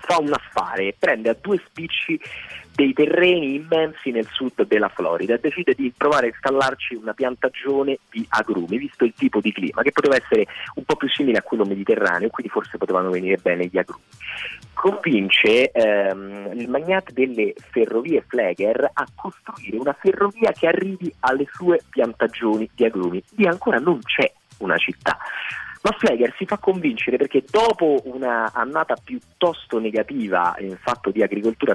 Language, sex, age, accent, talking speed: Italian, male, 30-49, native, 165 wpm